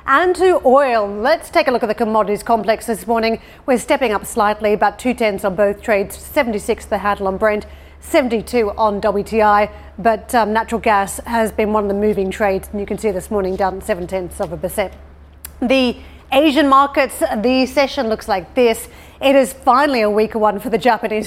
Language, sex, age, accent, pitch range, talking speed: English, female, 40-59, Australian, 205-235 Hz, 200 wpm